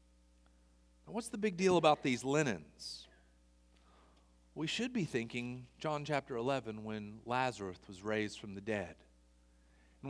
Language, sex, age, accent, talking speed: English, male, 40-59, American, 130 wpm